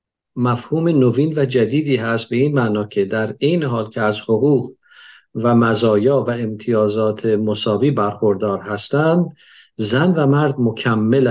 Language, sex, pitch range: Persian, male, 110-145 Hz